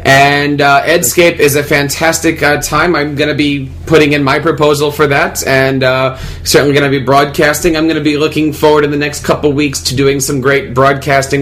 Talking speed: 215 wpm